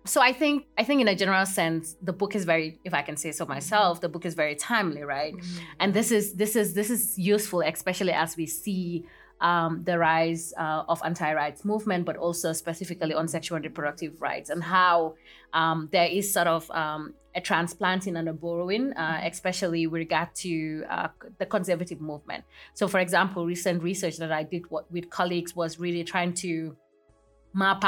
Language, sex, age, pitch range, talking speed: English, female, 20-39, 160-180 Hz, 190 wpm